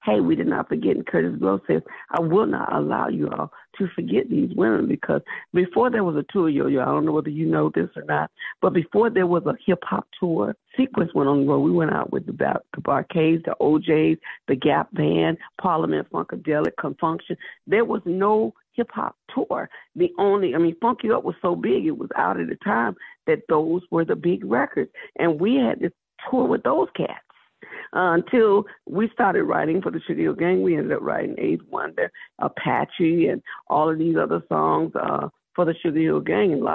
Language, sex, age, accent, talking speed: English, female, 50-69, American, 205 wpm